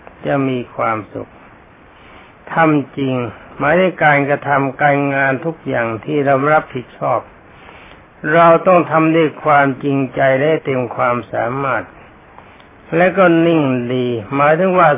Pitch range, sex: 130-160 Hz, male